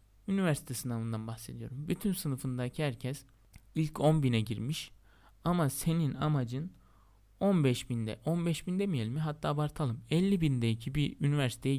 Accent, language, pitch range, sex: native, Turkish, 115-150 Hz, male